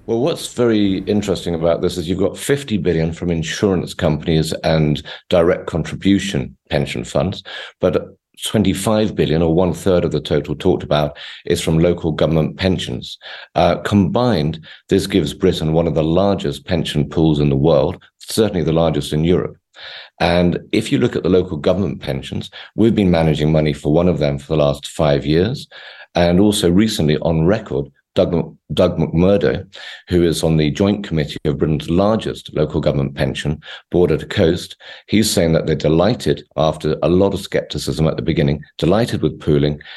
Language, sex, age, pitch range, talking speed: English, male, 50-69, 75-90 Hz, 175 wpm